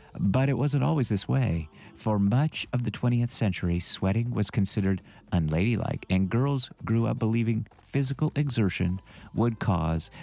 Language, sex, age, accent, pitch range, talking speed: English, male, 50-69, American, 90-120 Hz, 145 wpm